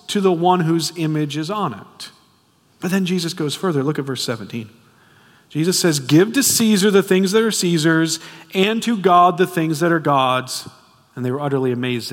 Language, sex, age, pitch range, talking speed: English, male, 40-59, 130-200 Hz, 200 wpm